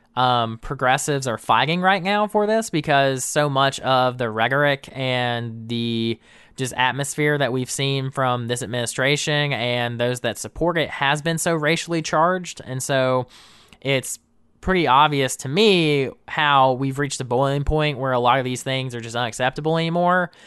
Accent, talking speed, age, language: American, 165 wpm, 20-39, English